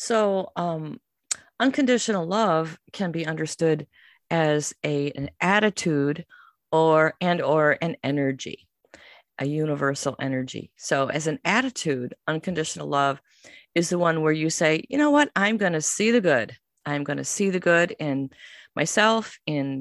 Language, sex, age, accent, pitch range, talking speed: English, female, 50-69, American, 140-175 Hz, 140 wpm